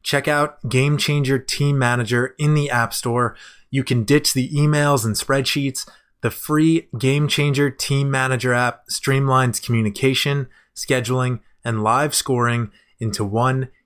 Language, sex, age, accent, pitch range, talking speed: English, male, 20-39, American, 120-140 Hz, 140 wpm